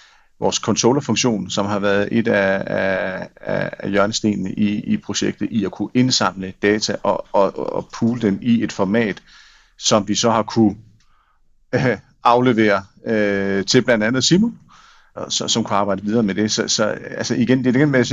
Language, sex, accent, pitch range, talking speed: Danish, male, native, 100-120 Hz, 185 wpm